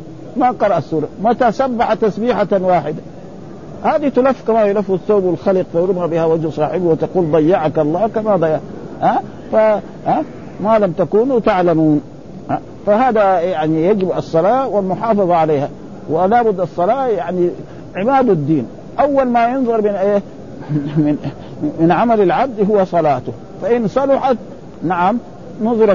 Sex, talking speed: male, 130 wpm